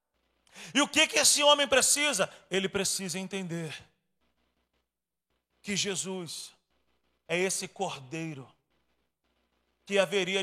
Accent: Brazilian